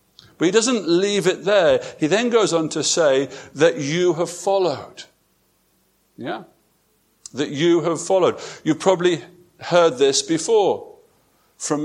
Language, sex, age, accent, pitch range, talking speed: English, male, 50-69, British, 160-215 Hz, 135 wpm